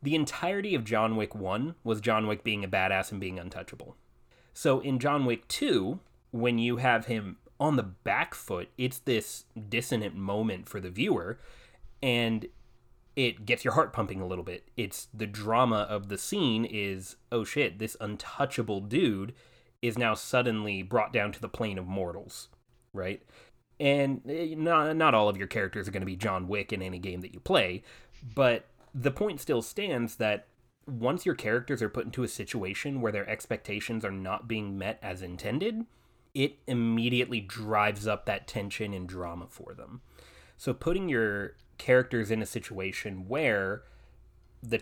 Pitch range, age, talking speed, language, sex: 95-120 Hz, 20-39, 170 wpm, English, male